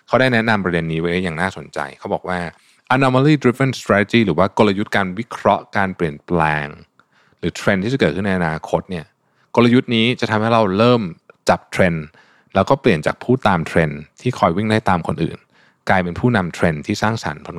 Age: 20-39